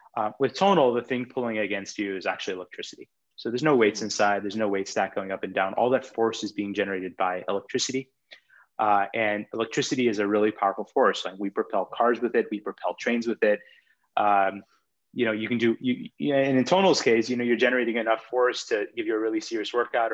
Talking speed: 225 wpm